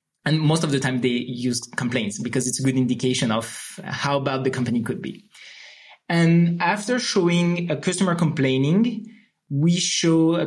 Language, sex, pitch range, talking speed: English, male, 135-180 Hz, 165 wpm